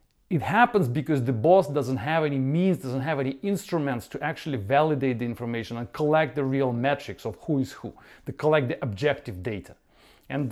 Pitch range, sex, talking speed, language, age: 130-165 Hz, male, 190 wpm, English, 40-59